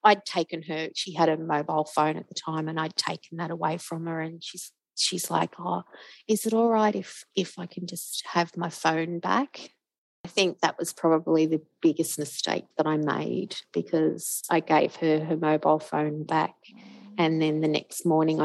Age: 30-49